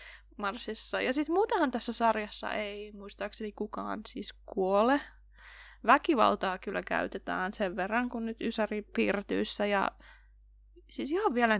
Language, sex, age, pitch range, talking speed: Finnish, female, 20-39, 200-295 Hz, 125 wpm